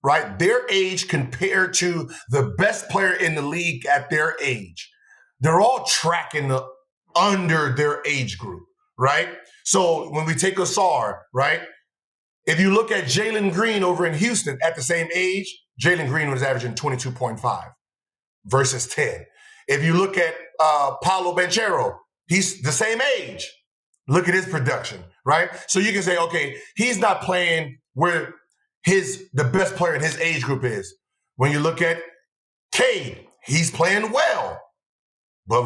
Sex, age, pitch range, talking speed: male, 40-59, 150-200 Hz, 155 wpm